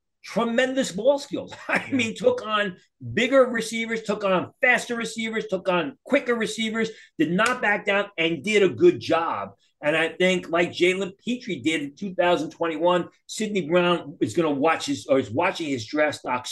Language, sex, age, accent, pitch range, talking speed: English, male, 40-59, American, 155-205 Hz, 175 wpm